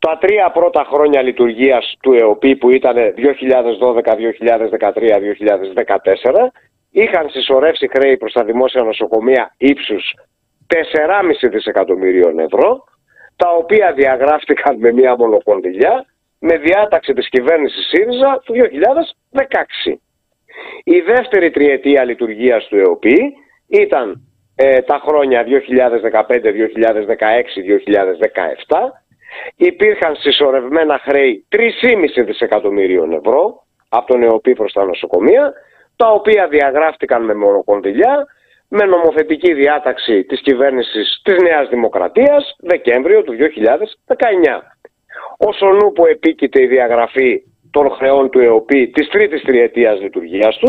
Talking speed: 105 wpm